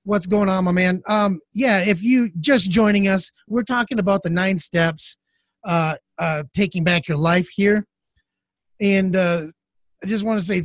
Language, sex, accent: English, male, American